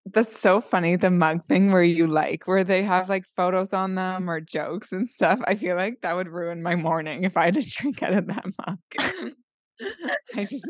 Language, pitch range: English, 165-190 Hz